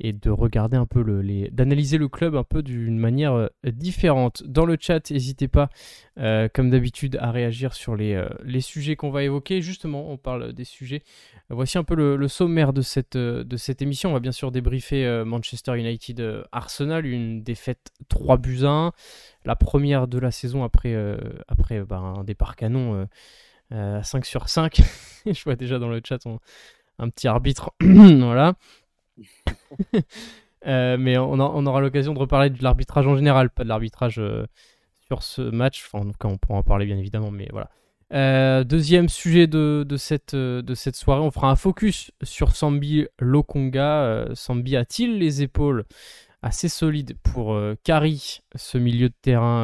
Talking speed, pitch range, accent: 190 wpm, 120-145 Hz, French